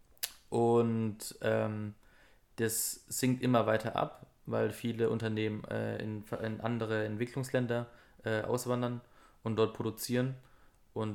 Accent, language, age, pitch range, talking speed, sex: German, German, 20-39, 105-115 Hz, 115 wpm, male